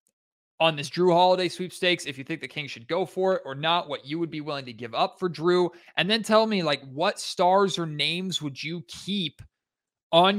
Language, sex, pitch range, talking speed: English, male, 140-180 Hz, 225 wpm